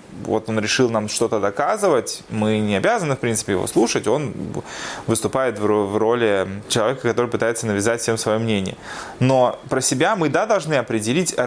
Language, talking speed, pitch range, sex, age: Russian, 160 wpm, 105-125 Hz, male, 20-39